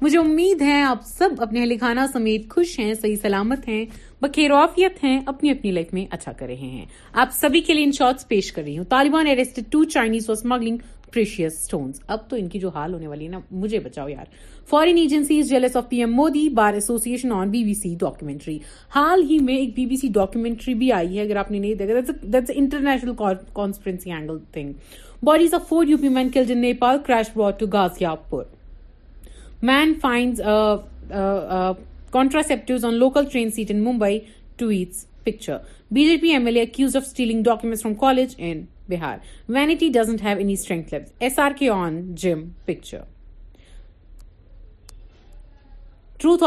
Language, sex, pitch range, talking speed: Urdu, female, 180-265 Hz, 150 wpm